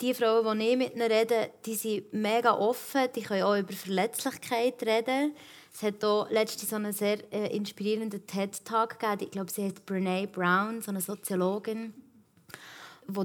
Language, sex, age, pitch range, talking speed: German, female, 20-39, 200-230 Hz, 150 wpm